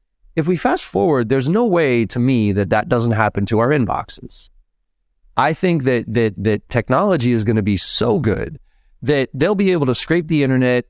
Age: 30-49